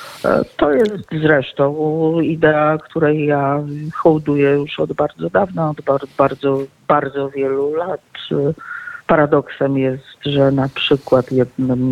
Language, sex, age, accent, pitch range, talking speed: Polish, female, 50-69, native, 120-145 Hz, 115 wpm